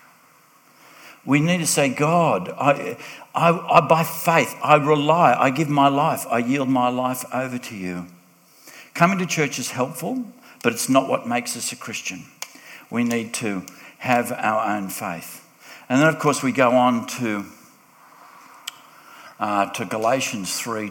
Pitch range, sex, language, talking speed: 100-140 Hz, male, English, 160 wpm